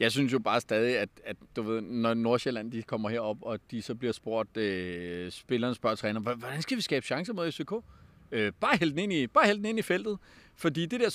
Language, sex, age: Danish, male, 30-49